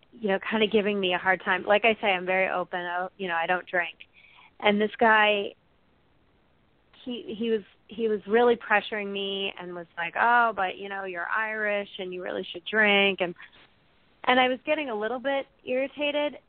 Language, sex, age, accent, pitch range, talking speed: English, female, 30-49, American, 190-225 Hz, 200 wpm